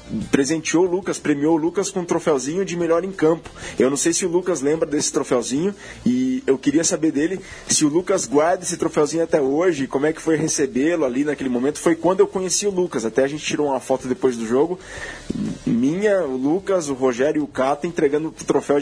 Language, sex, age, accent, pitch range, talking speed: Portuguese, male, 20-39, Brazilian, 130-170 Hz, 220 wpm